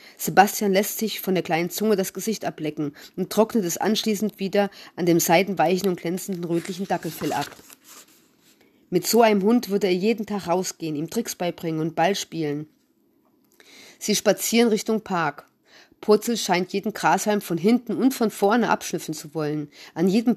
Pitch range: 170-215 Hz